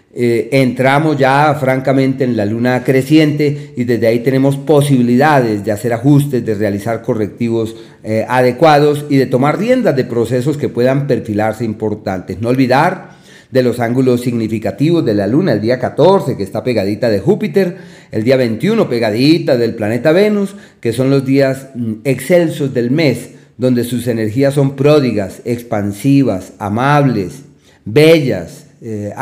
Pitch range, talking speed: 115-150 Hz, 145 wpm